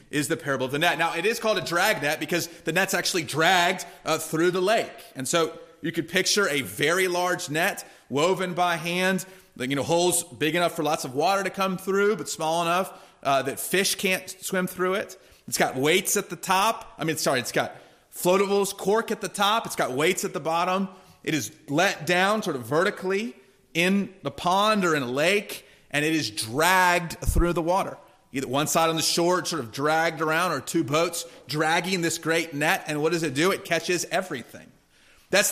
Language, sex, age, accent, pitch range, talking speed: English, male, 30-49, American, 160-195 Hz, 210 wpm